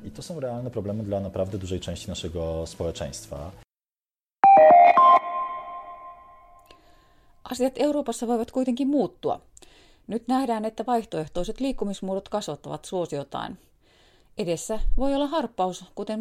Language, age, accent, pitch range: Finnish, 30-49, native, 165-250 Hz